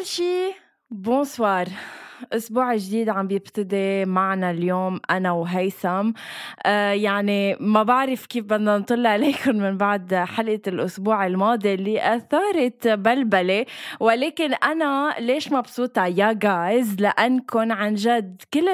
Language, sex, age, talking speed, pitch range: Arabic, female, 20-39, 115 wpm, 205-270 Hz